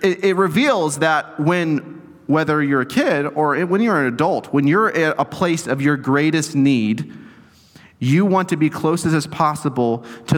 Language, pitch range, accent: English, 140-180 Hz, American